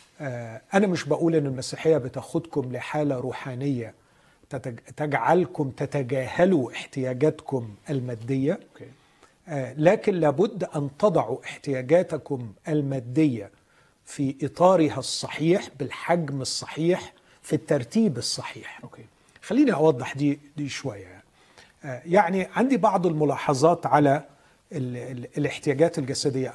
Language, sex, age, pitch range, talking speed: Arabic, male, 40-59, 130-160 Hz, 85 wpm